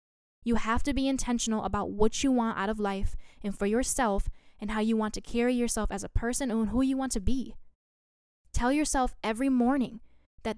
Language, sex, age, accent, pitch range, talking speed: English, female, 10-29, American, 205-245 Hz, 205 wpm